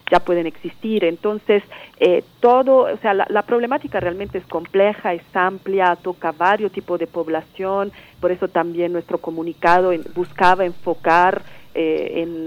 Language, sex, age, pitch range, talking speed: Italian, female, 40-59, 160-185 Hz, 145 wpm